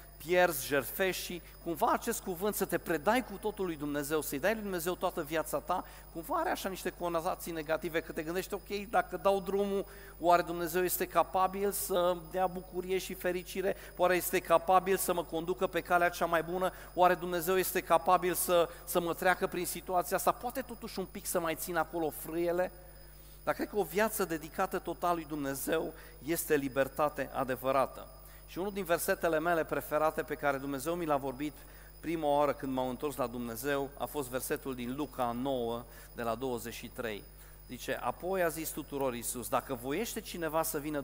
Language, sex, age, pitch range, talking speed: Romanian, male, 40-59, 140-180 Hz, 180 wpm